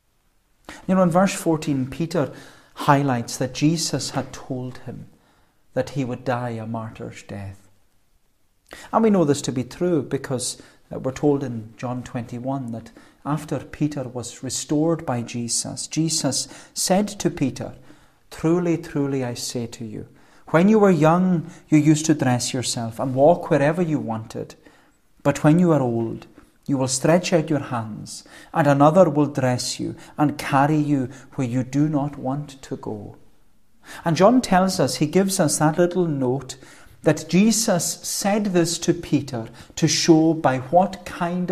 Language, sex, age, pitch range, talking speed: English, male, 40-59, 125-165 Hz, 160 wpm